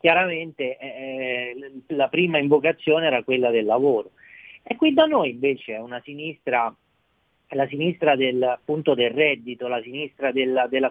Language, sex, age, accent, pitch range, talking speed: Italian, male, 40-59, native, 135-215 Hz, 155 wpm